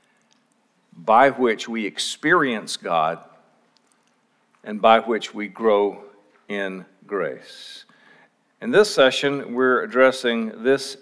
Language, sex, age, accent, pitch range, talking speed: English, male, 50-69, American, 115-140 Hz, 100 wpm